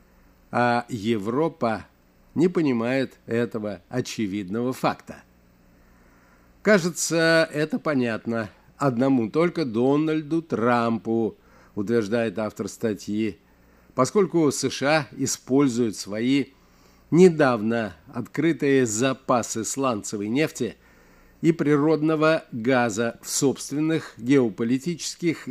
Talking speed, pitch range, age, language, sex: 75 wpm, 105-140 Hz, 50-69, Russian, male